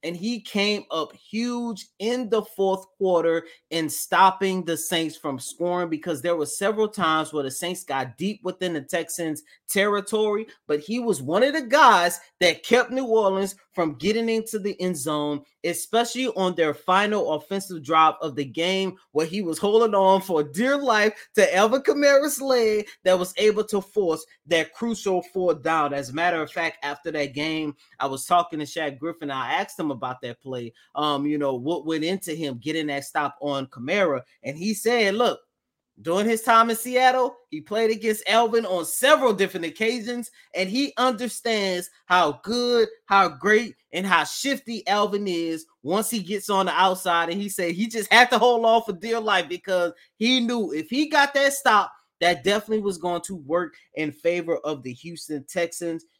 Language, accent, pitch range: English, American, 160-220 Hz